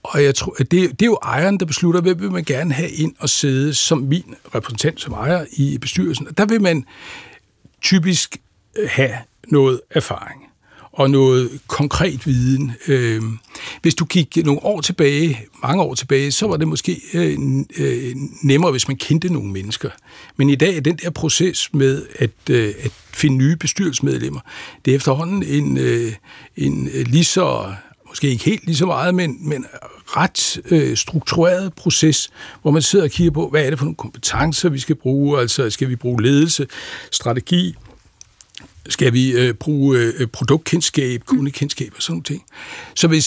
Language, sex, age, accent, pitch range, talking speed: Danish, male, 60-79, native, 130-170 Hz, 170 wpm